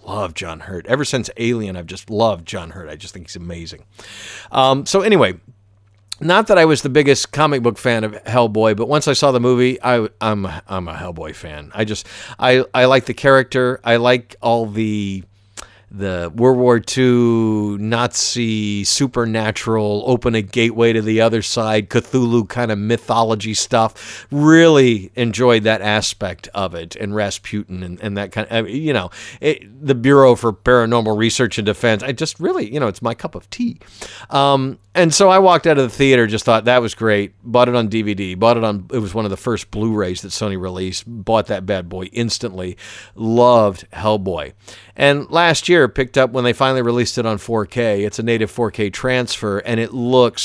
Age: 50-69